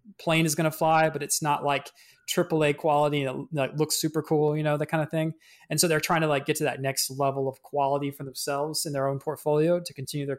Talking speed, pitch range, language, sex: 260 wpm, 140-180 Hz, English, male